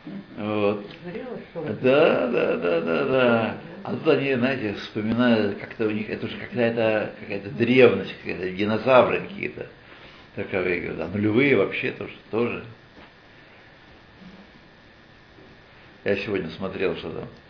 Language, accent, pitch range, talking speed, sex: Russian, native, 105-130 Hz, 110 wpm, male